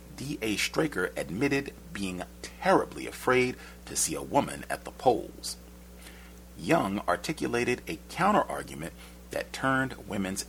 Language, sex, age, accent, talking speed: English, male, 40-59, American, 115 wpm